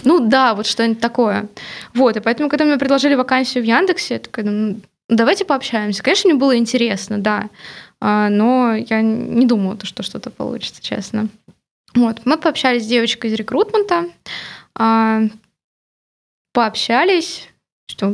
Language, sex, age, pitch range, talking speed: Russian, female, 20-39, 220-270 Hz, 135 wpm